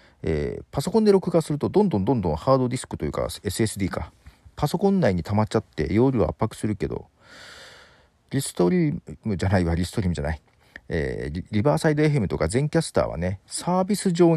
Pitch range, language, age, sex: 85-125 Hz, Japanese, 40-59, male